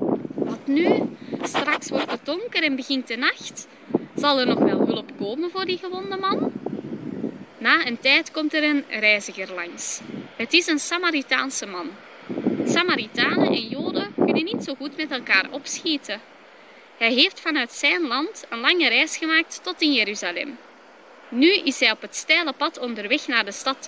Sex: female